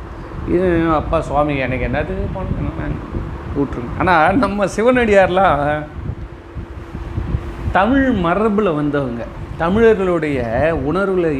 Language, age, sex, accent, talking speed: Tamil, 40-59, male, native, 80 wpm